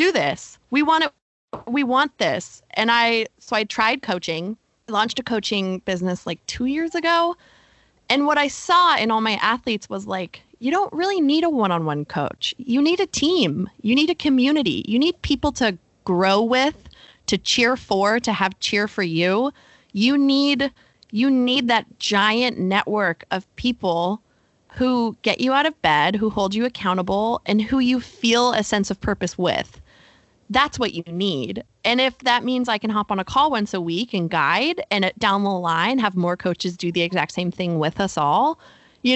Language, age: English, 20-39